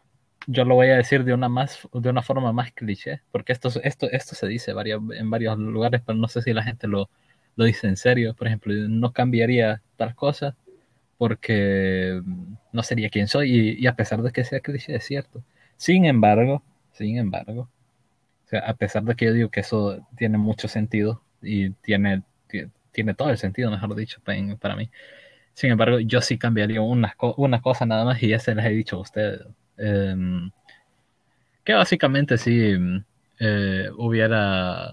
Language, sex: Spanish, male